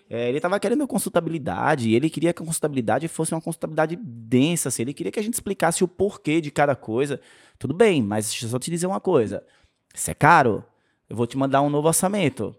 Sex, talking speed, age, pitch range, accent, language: male, 215 wpm, 20-39, 120-165 Hz, Brazilian, Portuguese